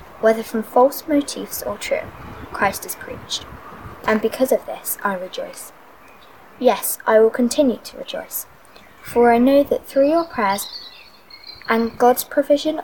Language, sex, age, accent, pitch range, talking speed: English, female, 10-29, British, 210-260 Hz, 145 wpm